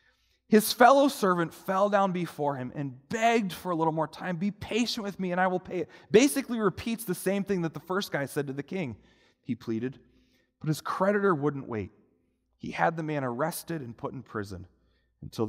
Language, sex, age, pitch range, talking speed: English, male, 30-49, 125-200 Hz, 205 wpm